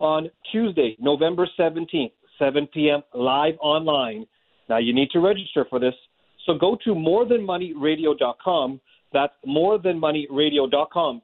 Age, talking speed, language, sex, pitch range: 40-59, 110 wpm, English, male, 140-185 Hz